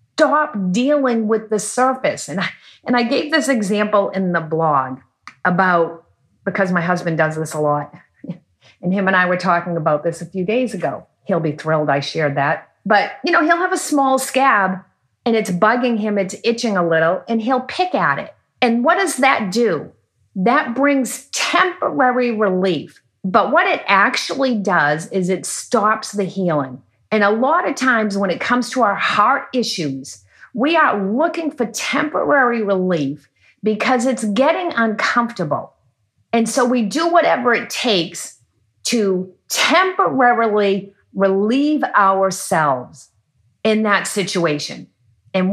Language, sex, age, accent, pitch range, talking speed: English, female, 40-59, American, 170-255 Hz, 155 wpm